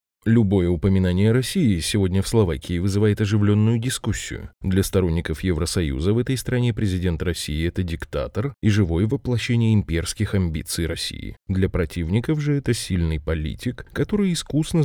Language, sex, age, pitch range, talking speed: Russian, male, 20-39, 90-120 Hz, 135 wpm